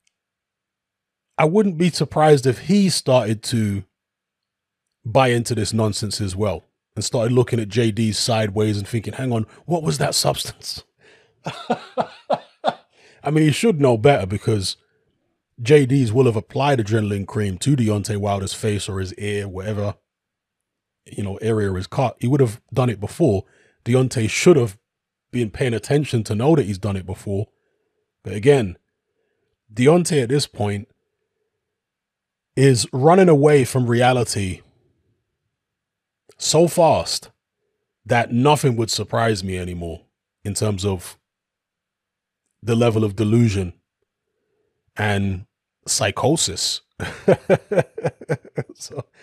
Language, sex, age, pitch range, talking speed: English, male, 30-49, 105-140 Hz, 125 wpm